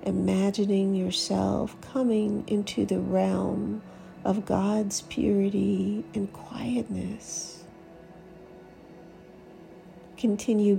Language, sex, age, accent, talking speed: English, female, 50-69, American, 65 wpm